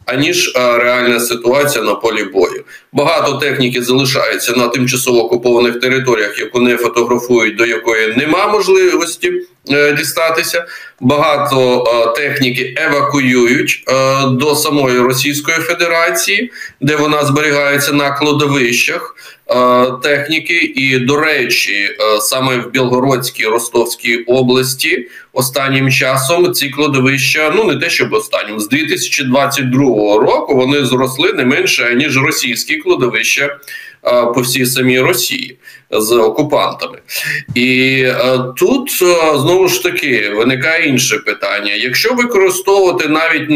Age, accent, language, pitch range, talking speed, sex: 20-39, native, Ukrainian, 125-155 Hz, 115 wpm, male